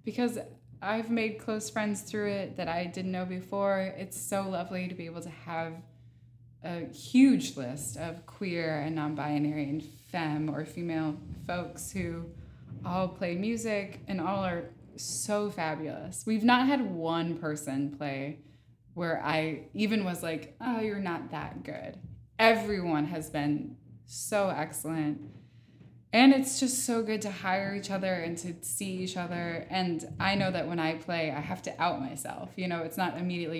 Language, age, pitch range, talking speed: English, 20-39, 155-195 Hz, 165 wpm